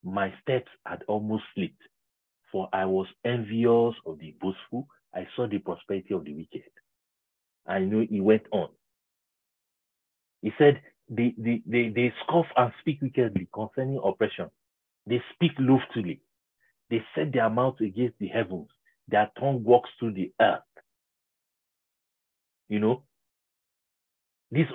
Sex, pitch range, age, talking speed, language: male, 110-155 Hz, 50-69, 135 wpm, English